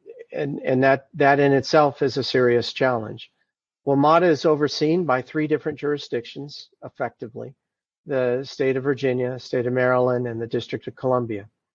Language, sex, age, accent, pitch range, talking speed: English, male, 50-69, American, 125-145 Hz, 155 wpm